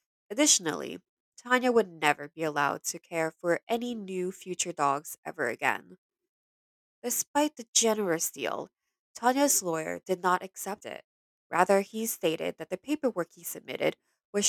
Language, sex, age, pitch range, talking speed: English, female, 20-39, 170-210 Hz, 140 wpm